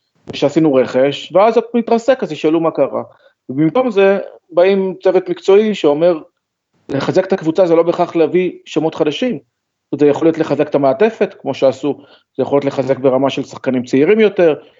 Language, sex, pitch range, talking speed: Hebrew, male, 135-180 Hz, 165 wpm